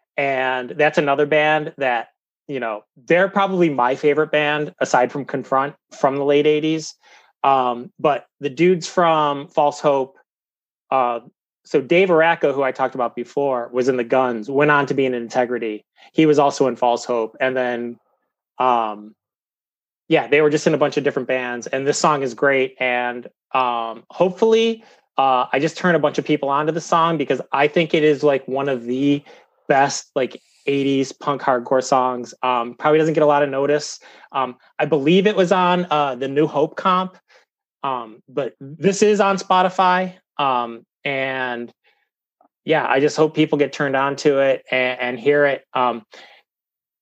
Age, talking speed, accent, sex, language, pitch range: 30-49, 180 wpm, American, male, English, 130-160 Hz